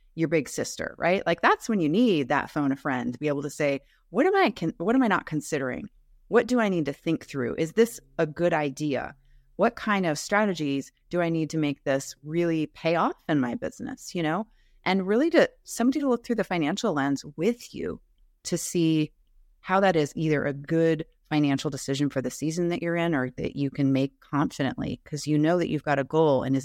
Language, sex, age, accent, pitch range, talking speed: English, female, 30-49, American, 145-190 Hz, 225 wpm